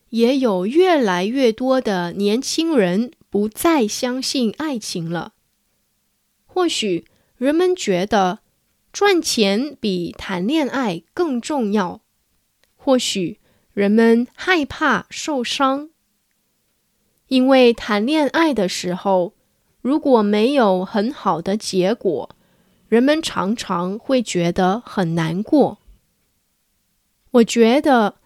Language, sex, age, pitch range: English, female, 20-39, 195-270 Hz